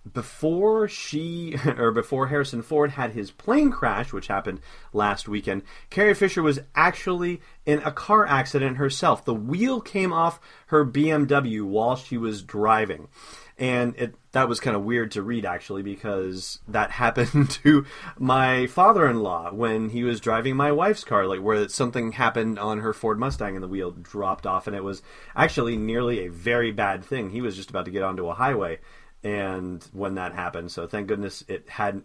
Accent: American